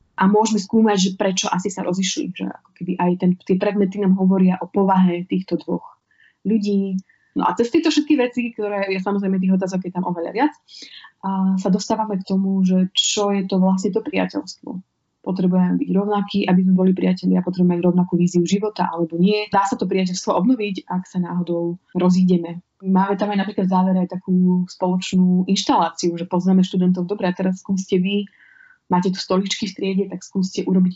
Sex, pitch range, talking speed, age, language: female, 180-200 Hz, 185 wpm, 20-39, Slovak